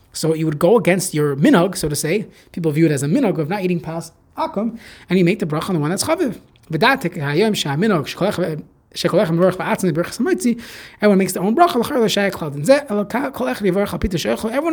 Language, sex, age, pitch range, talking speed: English, male, 20-39, 150-210 Hz, 150 wpm